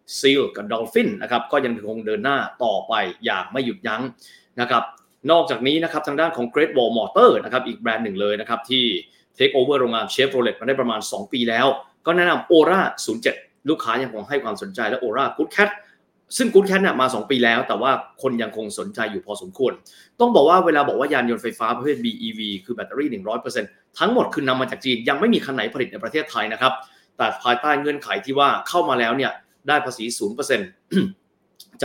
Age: 20-39